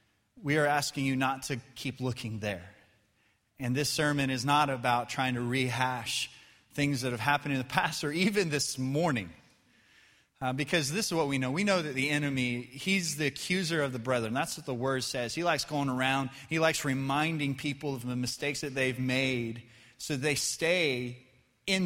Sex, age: male, 30-49